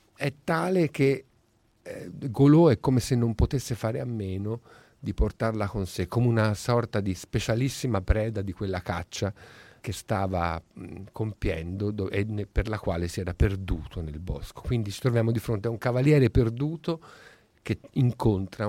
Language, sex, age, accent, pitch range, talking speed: Italian, male, 50-69, native, 95-135 Hz, 155 wpm